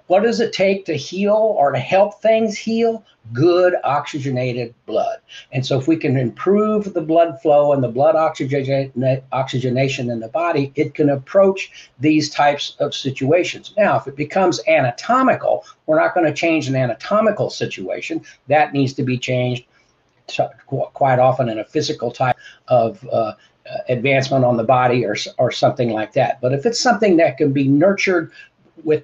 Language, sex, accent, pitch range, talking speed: English, male, American, 130-175 Hz, 175 wpm